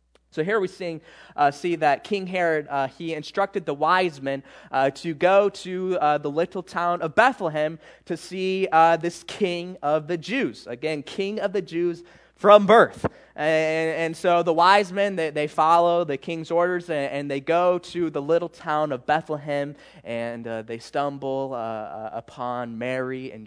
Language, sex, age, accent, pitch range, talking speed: English, male, 20-39, American, 130-175 Hz, 180 wpm